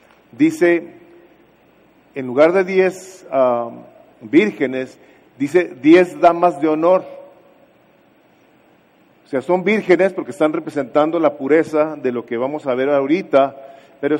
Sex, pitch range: male, 145-185 Hz